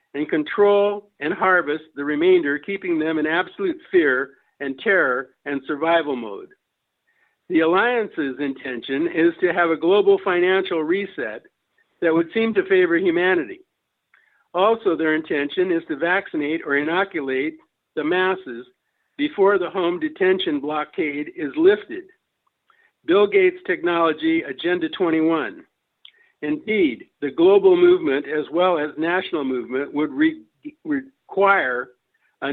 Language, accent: English, American